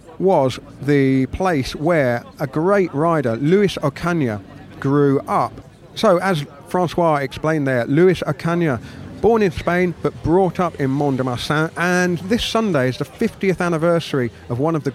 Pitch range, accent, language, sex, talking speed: 130-160 Hz, British, English, male, 150 wpm